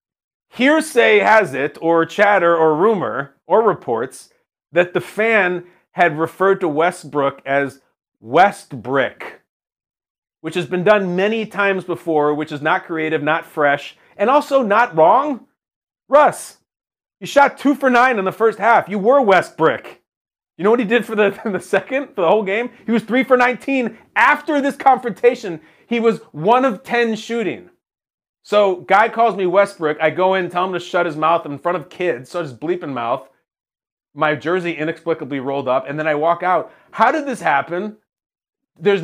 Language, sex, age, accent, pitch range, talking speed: English, male, 30-49, American, 165-235 Hz, 175 wpm